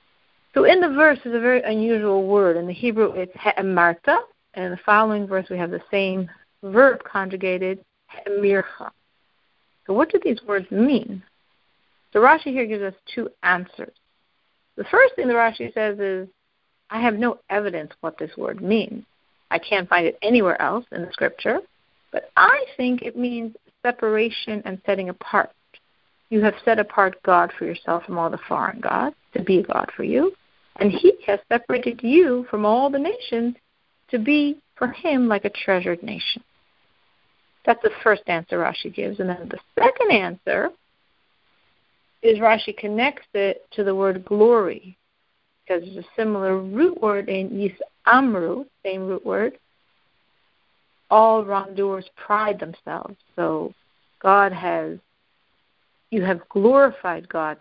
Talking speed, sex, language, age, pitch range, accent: 155 wpm, female, English, 60-79, 190-245 Hz, American